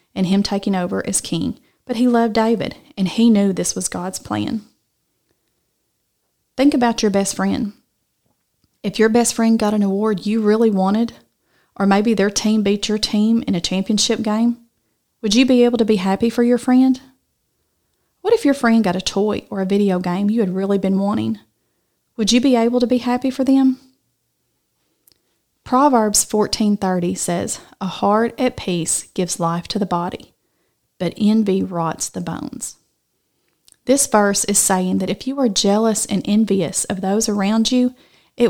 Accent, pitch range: American, 195-235 Hz